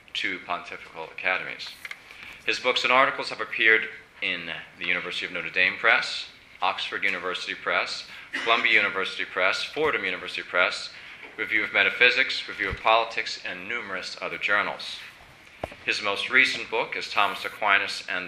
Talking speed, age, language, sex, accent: 140 wpm, 40-59, English, male, American